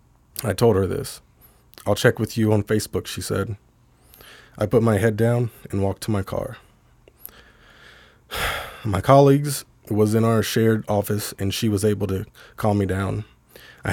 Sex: male